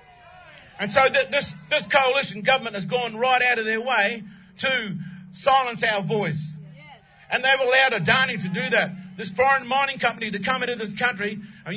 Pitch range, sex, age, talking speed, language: 200-265 Hz, male, 50-69, 175 wpm, English